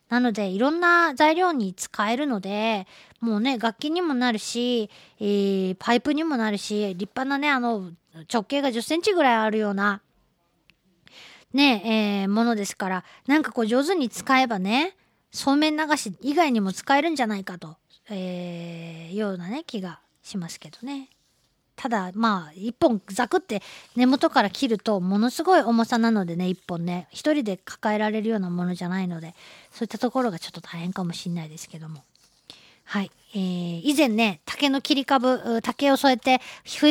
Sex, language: female, Japanese